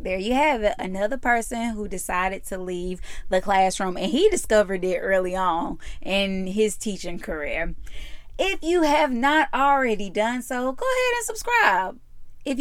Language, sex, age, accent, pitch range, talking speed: English, female, 20-39, American, 205-280 Hz, 160 wpm